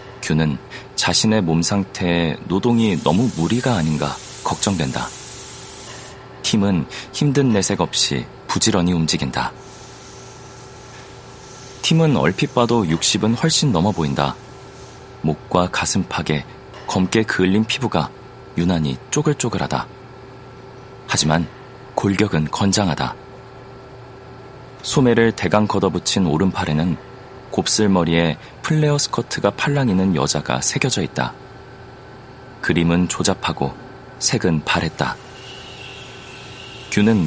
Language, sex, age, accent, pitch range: Korean, male, 40-59, native, 90-125 Hz